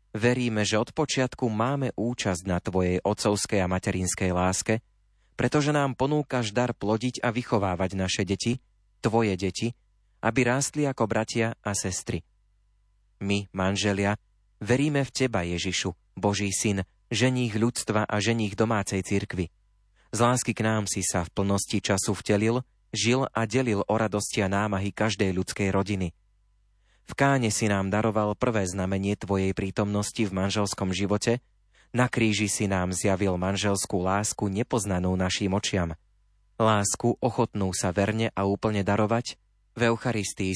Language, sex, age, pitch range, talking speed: Slovak, male, 30-49, 95-115 Hz, 140 wpm